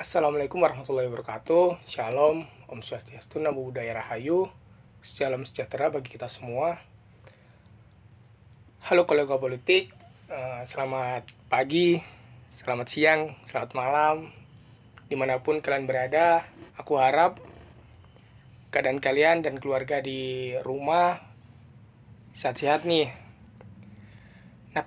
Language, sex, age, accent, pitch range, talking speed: Indonesian, male, 30-49, native, 115-150 Hz, 90 wpm